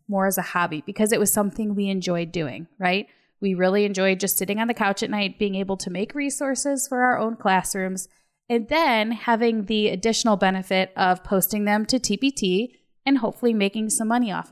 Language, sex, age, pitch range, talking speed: English, female, 20-39, 190-230 Hz, 200 wpm